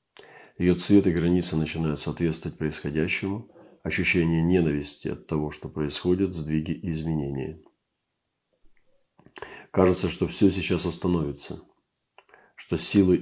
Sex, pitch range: male, 75-90 Hz